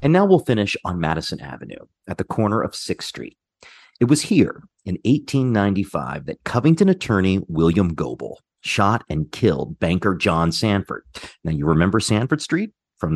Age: 30-49